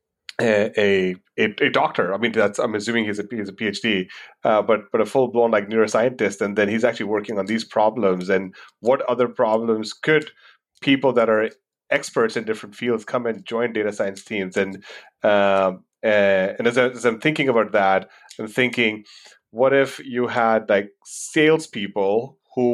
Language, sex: English, male